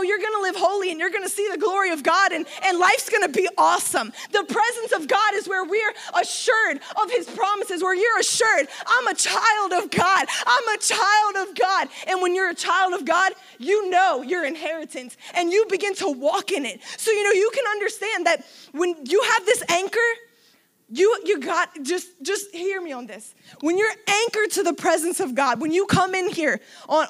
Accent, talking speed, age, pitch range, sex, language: American, 210 wpm, 20-39, 300-405 Hz, female, English